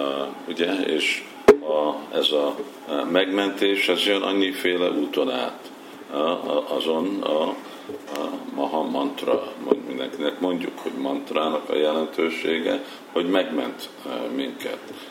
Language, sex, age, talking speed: Hungarian, male, 50-69, 110 wpm